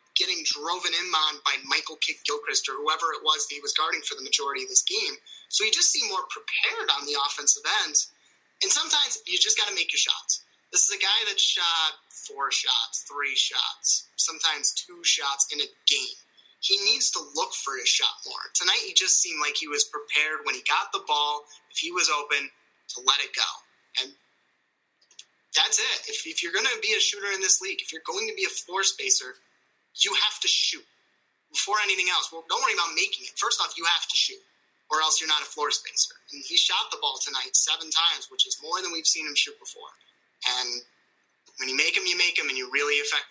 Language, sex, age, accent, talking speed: English, male, 30-49, American, 225 wpm